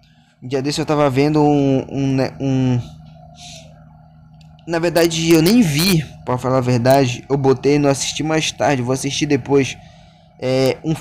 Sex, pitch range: male, 140-175 Hz